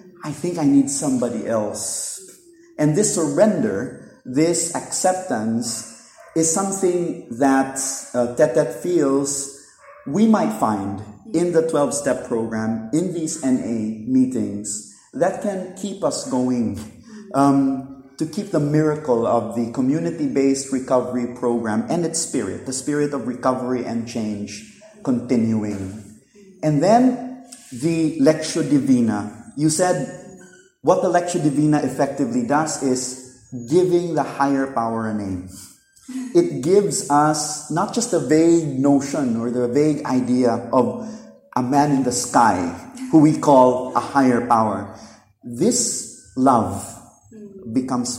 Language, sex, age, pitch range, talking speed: English, male, 30-49, 120-170 Hz, 130 wpm